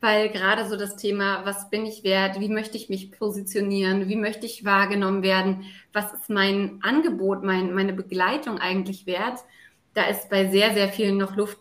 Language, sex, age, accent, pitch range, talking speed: German, female, 20-39, German, 195-250 Hz, 180 wpm